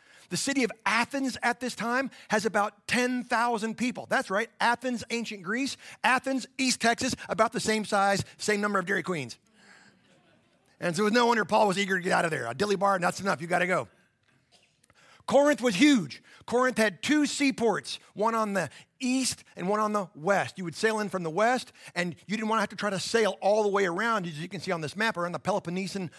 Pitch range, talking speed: 175-220 Hz, 220 wpm